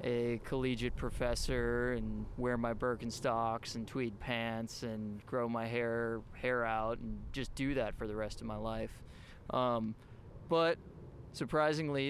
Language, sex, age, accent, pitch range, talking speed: English, male, 20-39, American, 110-125 Hz, 145 wpm